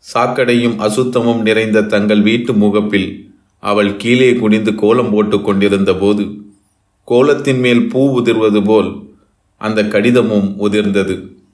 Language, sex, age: Tamil, male, 30-49